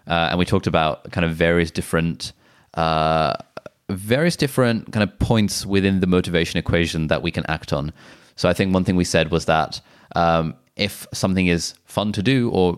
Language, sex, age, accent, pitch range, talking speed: English, male, 20-39, British, 85-95 Hz, 195 wpm